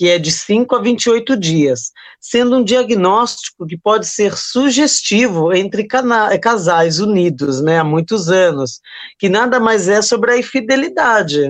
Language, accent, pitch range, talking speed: Portuguese, Brazilian, 170-240 Hz, 145 wpm